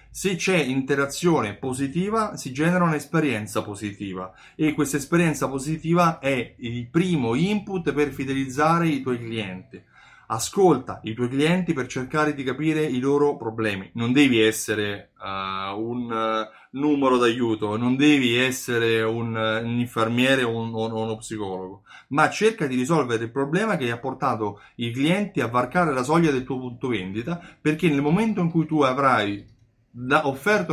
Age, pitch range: 30-49, 115-155 Hz